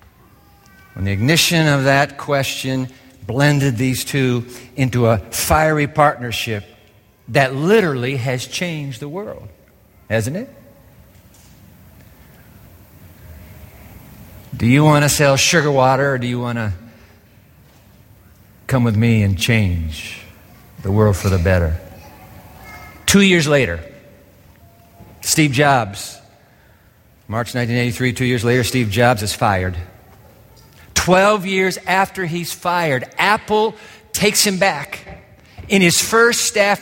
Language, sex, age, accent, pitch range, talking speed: English, male, 50-69, American, 105-155 Hz, 110 wpm